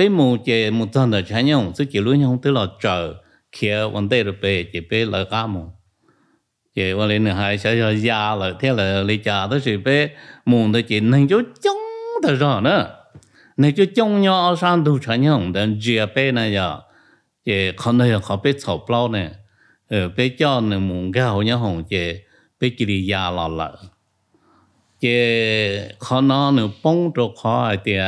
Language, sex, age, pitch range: English, male, 50-69, 100-125 Hz